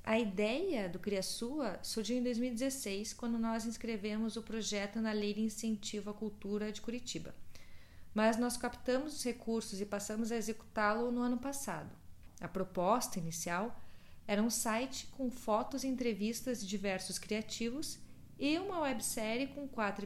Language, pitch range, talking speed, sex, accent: Portuguese, 205-250 Hz, 150 wpm, female, Brazilian